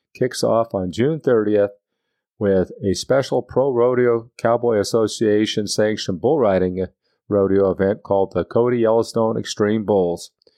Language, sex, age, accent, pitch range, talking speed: English, male, 40-59, American, 100-120 Hz, 130 wpm